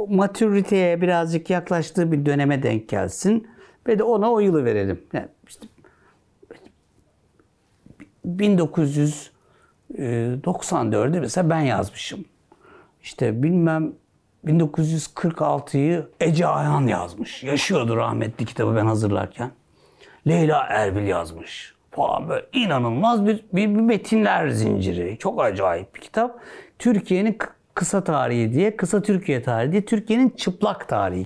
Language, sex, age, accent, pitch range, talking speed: Turkish, male, 60-79, native, 140-210 Hz, 110 wpm